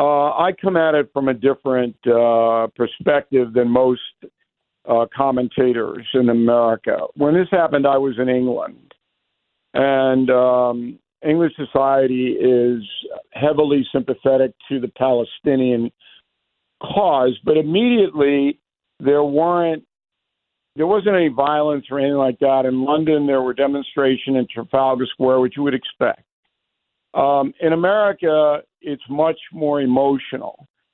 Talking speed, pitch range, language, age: 125 wpm, 130-155 Hz, English, 50-69